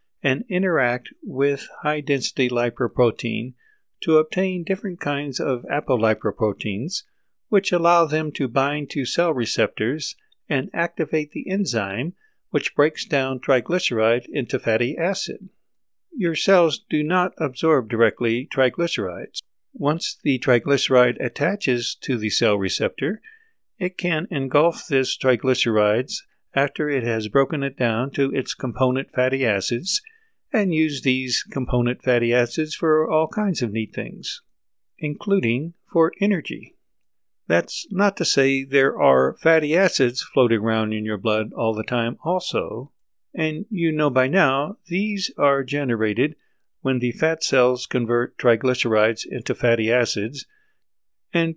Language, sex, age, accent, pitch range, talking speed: English, male, 60-79, American, 120-170 Hz, 130 wpm